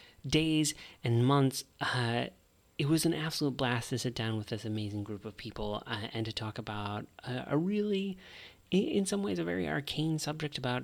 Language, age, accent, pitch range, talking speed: English, 30-49, American, 110-140 Hz, 190 wpm